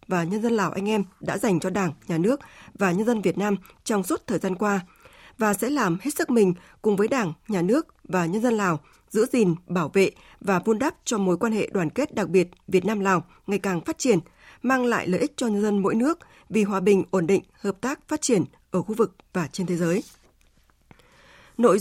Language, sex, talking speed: Vietnamese, female, 235 wpm